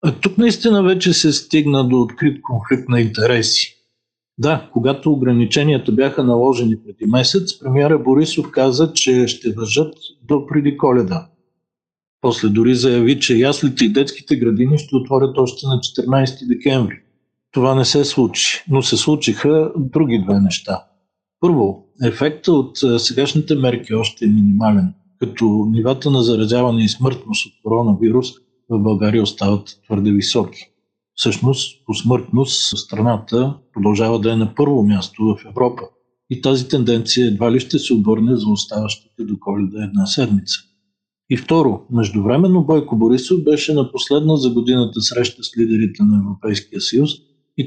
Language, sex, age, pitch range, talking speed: Bulgarian, male, 50-69, 110-140 Hz, 145 wpm